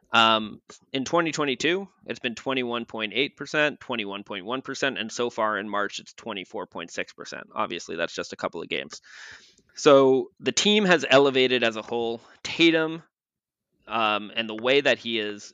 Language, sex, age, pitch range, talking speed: English, male, 20-39, 110-135 Hz, 155 wpm